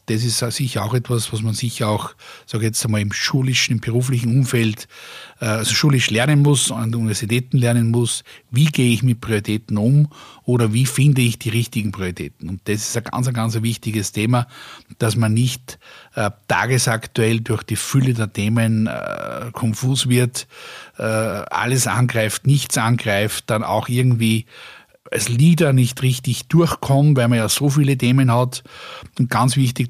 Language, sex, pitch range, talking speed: German, male, 110-125 Hz, 170 wpm